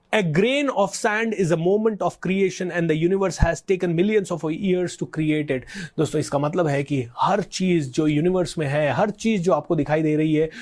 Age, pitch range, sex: 30-49, 155-205 Hz, male